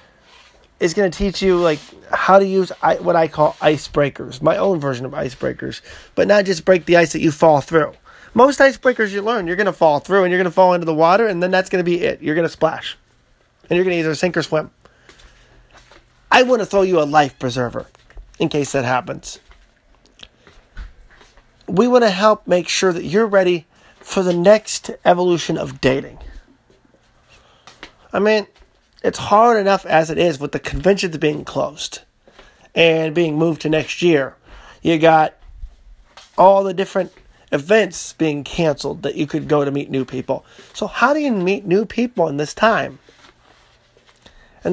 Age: 30-49